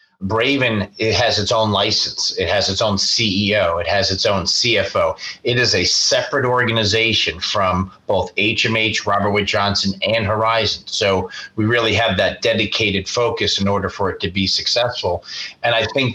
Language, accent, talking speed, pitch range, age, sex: English, American, 170 wpm, 100-120 Hz, 30-49, male